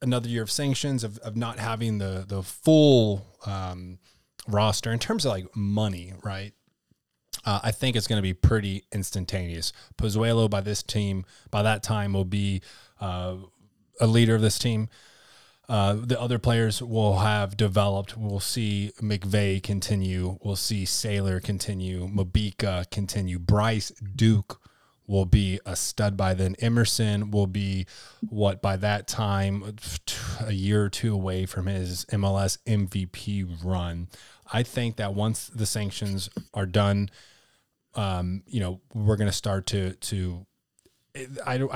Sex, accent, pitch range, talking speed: male, American, 95-115 Hz, 150 wpm